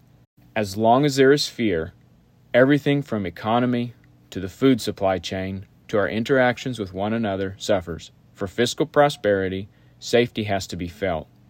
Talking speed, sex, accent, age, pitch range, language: 150 wpm, male, American, 30-49, 95-120 Hz, English